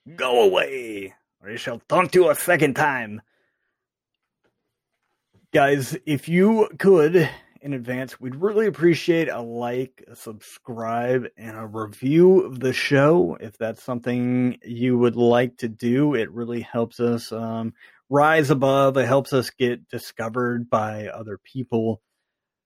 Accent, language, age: American, English, 30-49